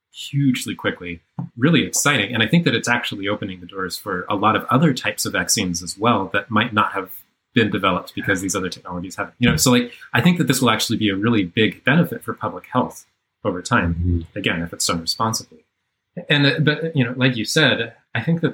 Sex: male